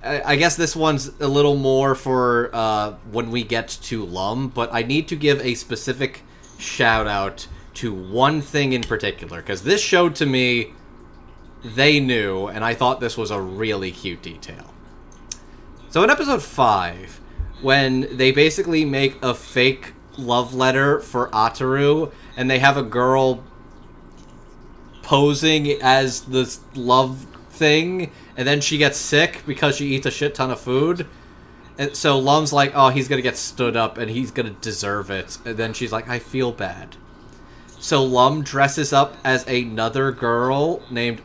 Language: English